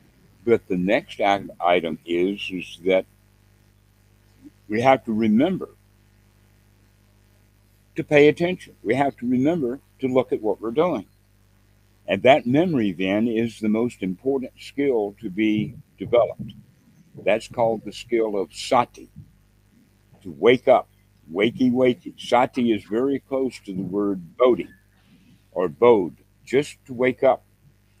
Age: 60-79